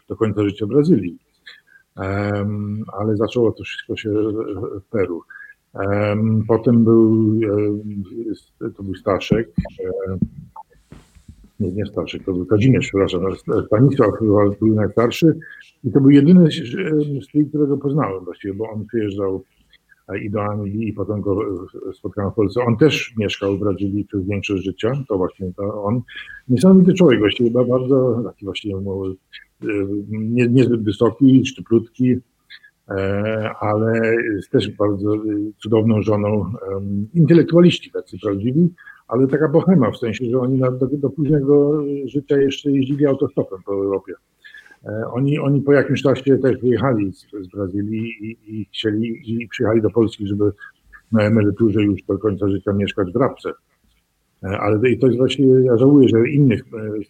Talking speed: 145 wpm